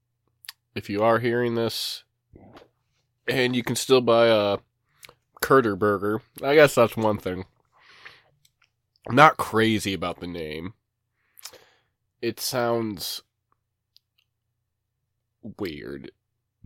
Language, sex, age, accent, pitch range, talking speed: English, male, 20-39, American, 105-120 Hz, 95 wpm